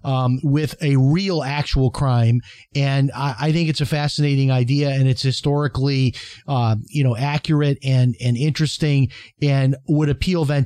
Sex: male